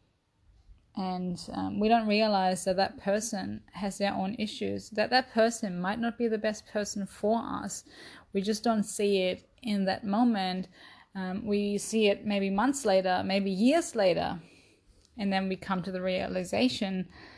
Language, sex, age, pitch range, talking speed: English, female, 20-39, 175-210 Hz, 165 wpm